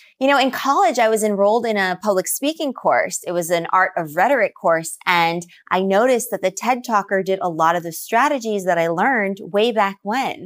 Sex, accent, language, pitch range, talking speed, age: female, American, English, 175-230 Hz, 220 wpm, 20-39